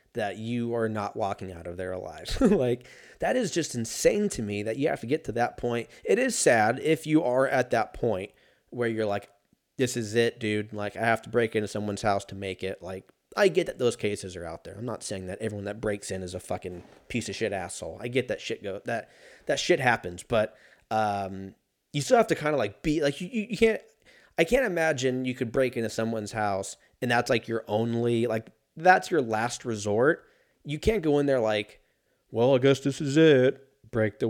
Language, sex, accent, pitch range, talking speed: English, male, American, 105-155 Hz, 230 wpm